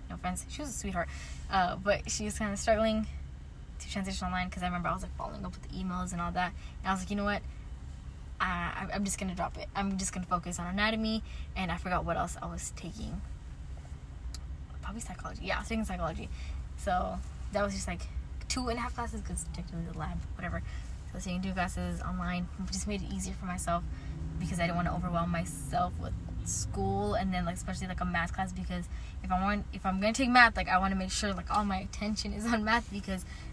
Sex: female